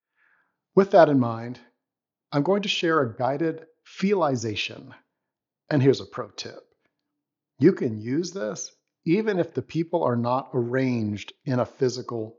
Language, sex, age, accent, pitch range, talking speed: English, male, 50-69, American, 110-140 Hz, 145 wpm